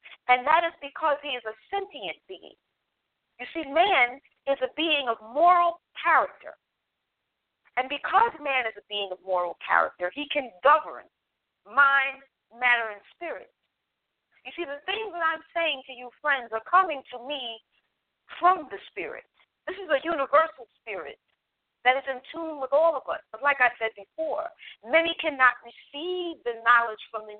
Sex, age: female, 40-59